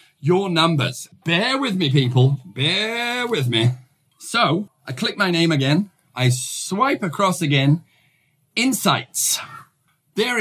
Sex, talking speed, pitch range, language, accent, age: male, 120 wpm, 140-185 Hz, English, British, 40-59